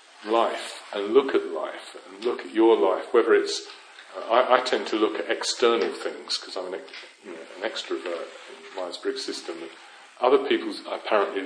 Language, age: English, 40-59